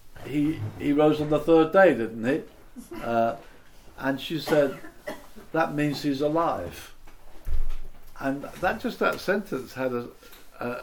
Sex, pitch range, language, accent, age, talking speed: male, 110-135 Hz, English, British, 50-69, 140 wpm